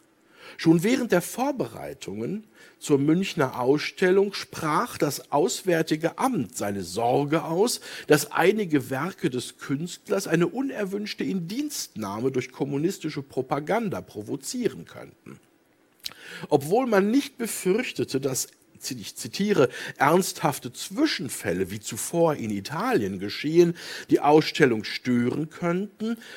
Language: German